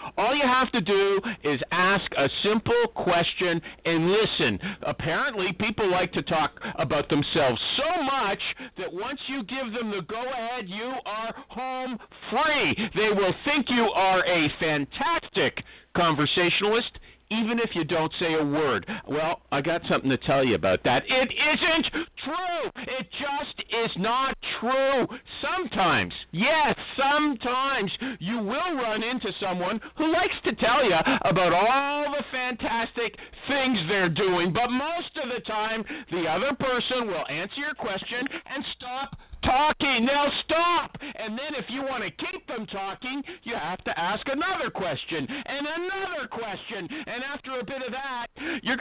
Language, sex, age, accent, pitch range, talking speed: English, male, 50-69, American, 200-280 Hz, 155 wpm